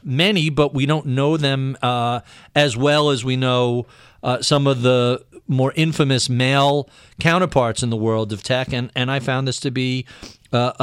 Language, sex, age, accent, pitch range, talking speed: English, male, 50-69, American, 125-175 Hz, 185 wpm